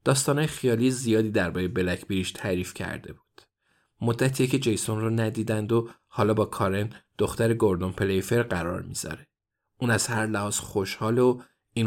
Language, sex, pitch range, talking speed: Persian, male, 100-120 Hz, 145 wpm